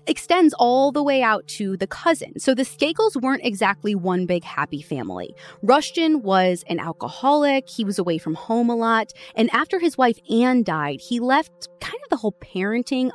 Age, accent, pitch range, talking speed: 20-39, American, 170-245 Hz, 185 wpm